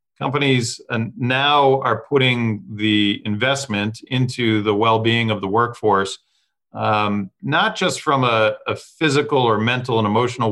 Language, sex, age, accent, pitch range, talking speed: English, male, 40-59, American, 105-130 Hz, 130 wpm